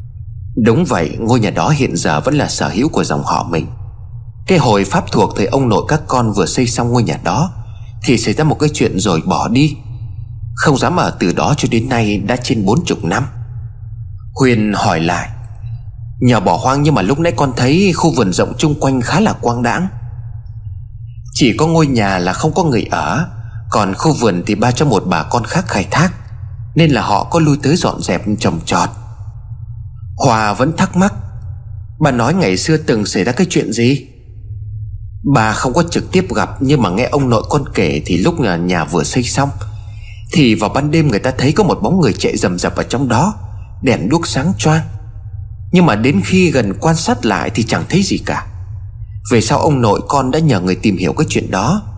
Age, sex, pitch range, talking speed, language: 20-39, male, 105-135 Hz, 210 wpm, Vietnamese